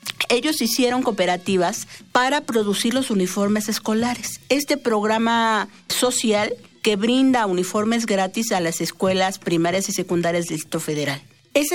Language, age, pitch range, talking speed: Spanish, 50-69, 180-240 Hz, 130 wpm